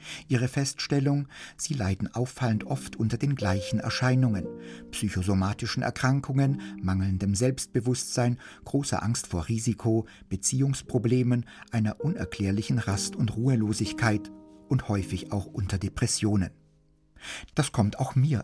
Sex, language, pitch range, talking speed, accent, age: male, German, 100-130 Hz, 105 wpm, German, 50-69